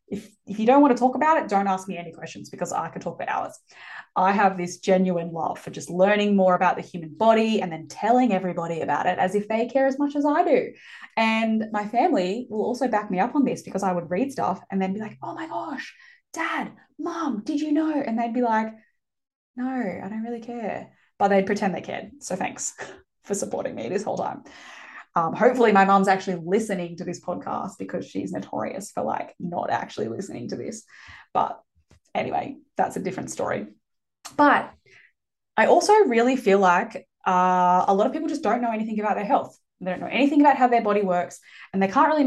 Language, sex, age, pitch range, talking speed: English, female, 10-29, 185-255 Hz, 215 wpm